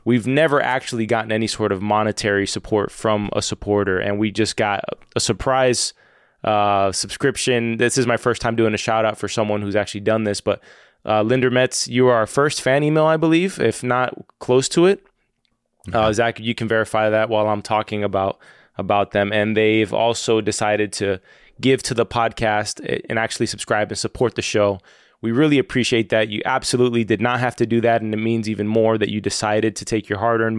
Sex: male